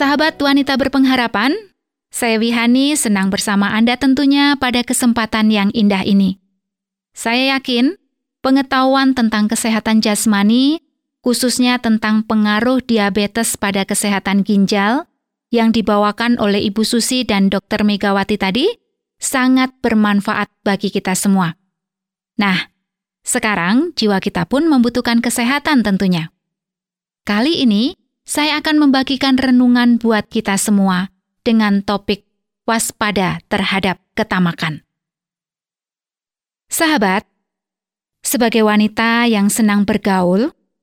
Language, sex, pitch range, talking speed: Indonesian, female, 200-245 Hz, 100 wpm